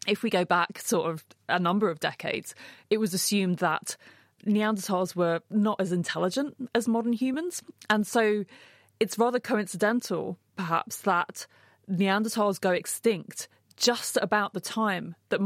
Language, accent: English, British